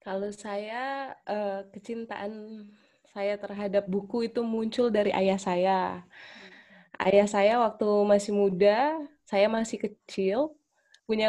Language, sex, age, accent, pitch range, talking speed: English, female, 20-39, Indonesian, 200-230 Hz, 105 wpm